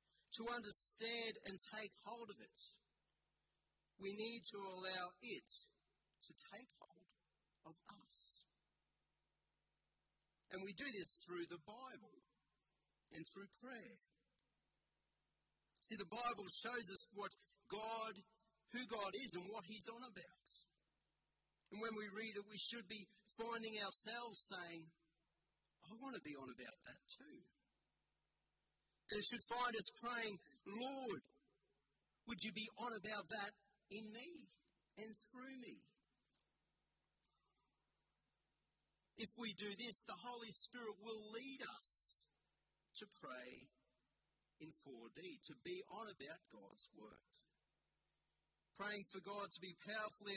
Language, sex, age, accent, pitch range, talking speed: English, male, 40-59, Australian, 190-230 Hz, 125 wpm